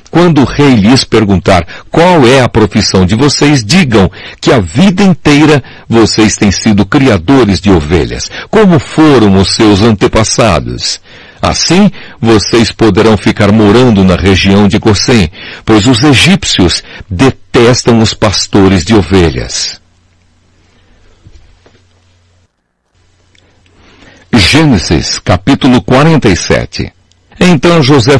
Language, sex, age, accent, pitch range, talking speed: Portuguese, male, 60-79, Brazilian, 95-145 Hz, 105 wpm